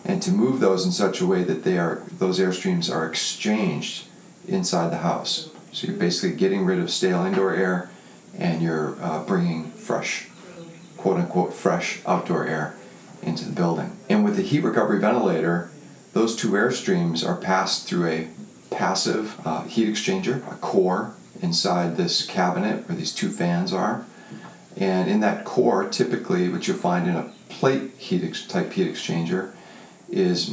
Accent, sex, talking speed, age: American, male, 170 wpm, 40-59